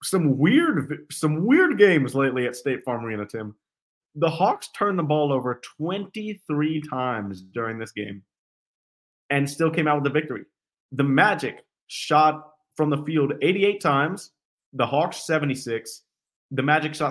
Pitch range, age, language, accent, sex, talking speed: 135-165 Hz, 30-49, English, American, male, 150 wpm